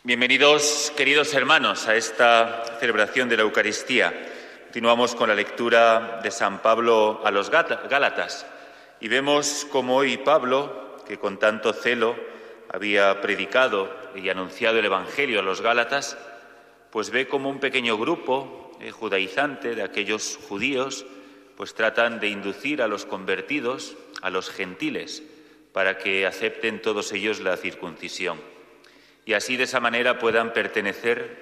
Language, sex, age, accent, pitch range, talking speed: Spanish, male, 30-49, Spanish, 105-130 Hz, 135 wpm